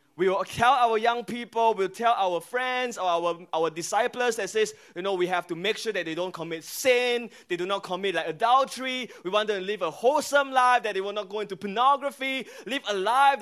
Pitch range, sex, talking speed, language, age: 180-230 Hz, male, 235 wpm, English, 20-39